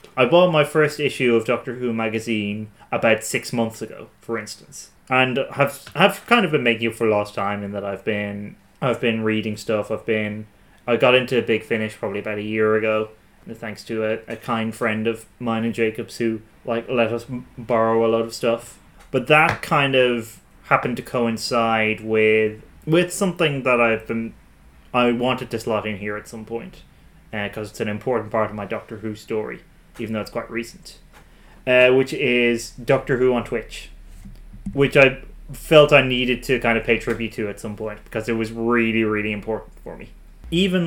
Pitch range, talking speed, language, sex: 110-140 Hz, 200 wpm, English, male